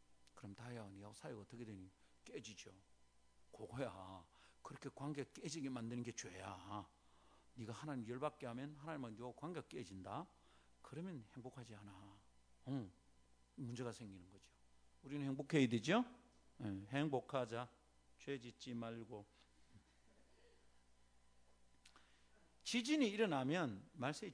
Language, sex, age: Korean, male, 50-69